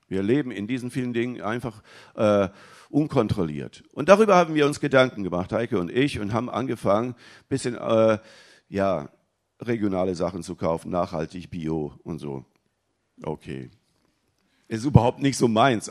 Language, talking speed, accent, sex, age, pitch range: German, 145 wpm, German, male, 50-69, 110-155 Hz